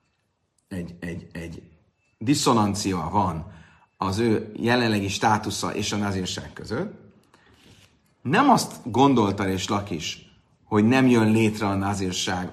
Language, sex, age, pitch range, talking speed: Hungarian, male, 30-49, 95-120 Hz, 115 wpm